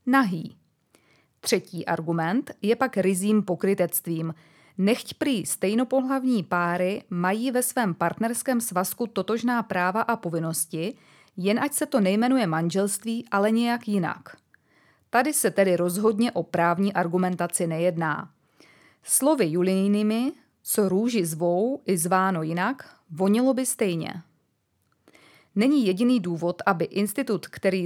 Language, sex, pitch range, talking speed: Czech, female, 175-230 Hz, 115 wpm